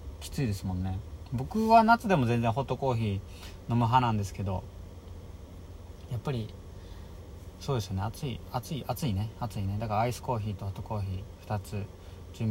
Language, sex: Japanese, male